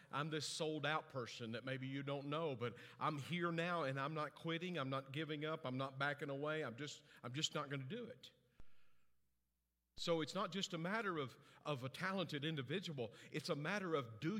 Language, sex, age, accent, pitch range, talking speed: English, male, 50-69, American, 140-200 Hz, 210 wpm